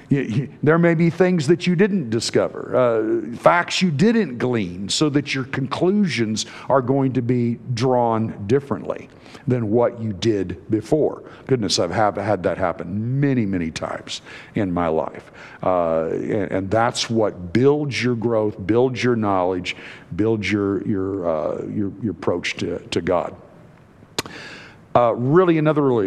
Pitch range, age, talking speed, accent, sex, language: 110-150 Hz, 50-69, 150 wpm, American, male, English